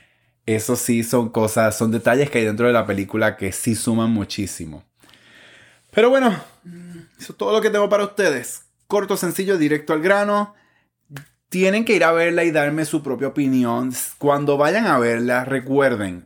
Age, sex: 20-39, male